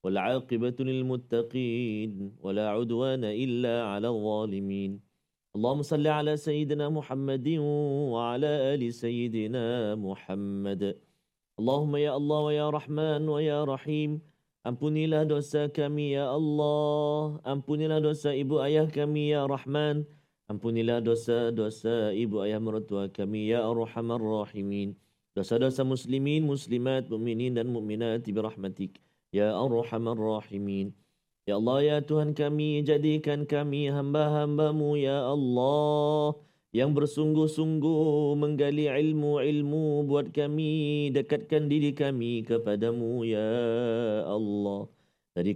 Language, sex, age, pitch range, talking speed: Malayalam, male, 40-59, 110-150 Hz, 105 wpm